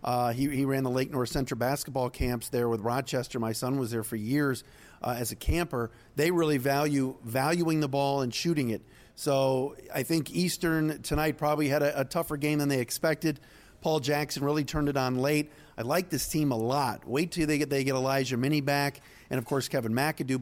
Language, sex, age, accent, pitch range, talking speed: English, male, 40-59, American, 130-155 Hz, 215 wpm